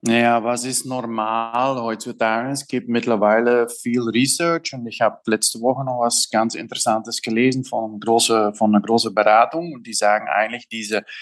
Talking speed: 165 wpm